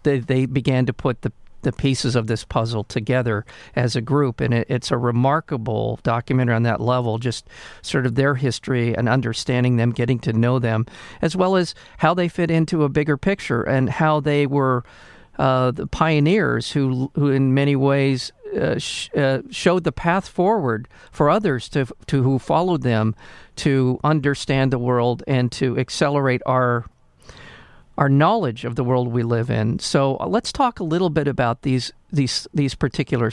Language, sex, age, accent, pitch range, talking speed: English, male, 50-69, American, 125-150 Hz, 180 wpm